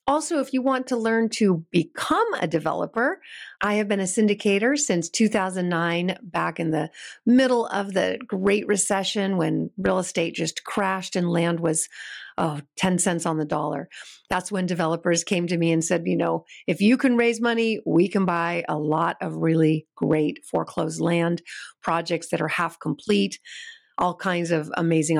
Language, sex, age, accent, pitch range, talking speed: English, female, 40-59, American, 175-220 Hz, 170 wpm